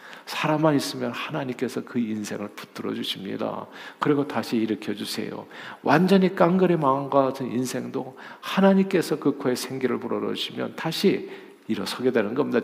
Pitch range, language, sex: 110-150 Hz, Korean, male